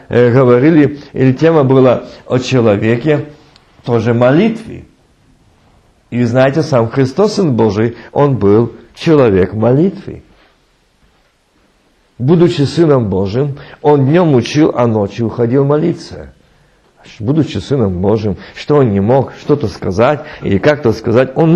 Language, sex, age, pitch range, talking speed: Russian, male, 50-69, 105-150 Hz, 115 wpm